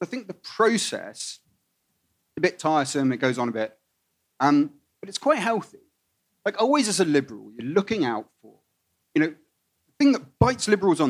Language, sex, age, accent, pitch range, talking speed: English, male, 30-49, British, 125-205 Hz, 190 wpm